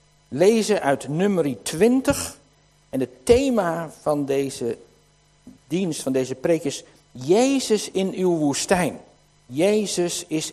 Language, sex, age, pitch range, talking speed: Dutch, male, 60-79, 145-220 Hz, 115 wpm